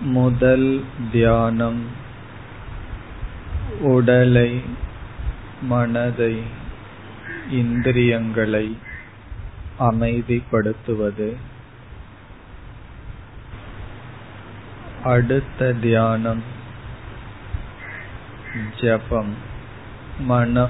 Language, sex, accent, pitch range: Tamil, male, native, 105-120 Hz